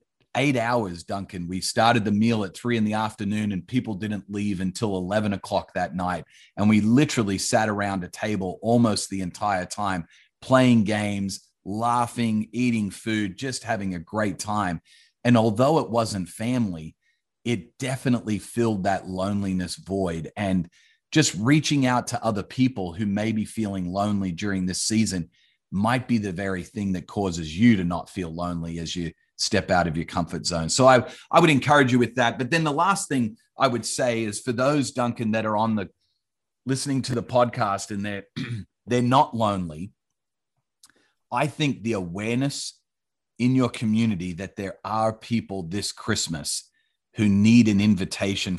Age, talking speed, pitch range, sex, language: 30-49, 170 wpm, 95-120 Hz, male, English